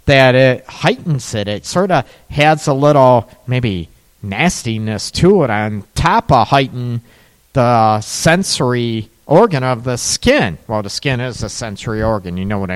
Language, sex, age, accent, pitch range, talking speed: English, male, 40-59, American, 115-160 Hz, 160 wpm